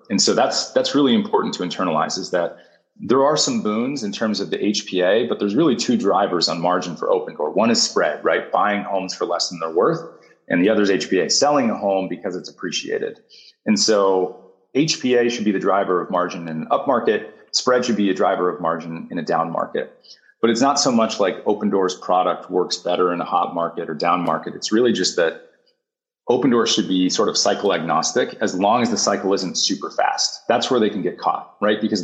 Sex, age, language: male, 30-49, English